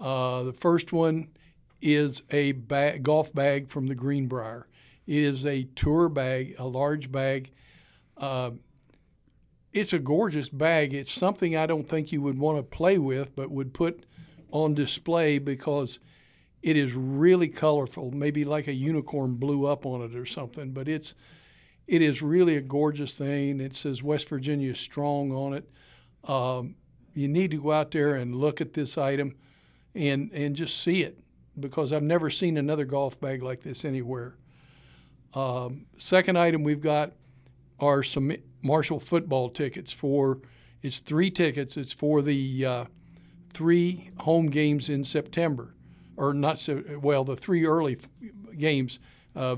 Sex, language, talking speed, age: male, English, 155 wpm, 60-79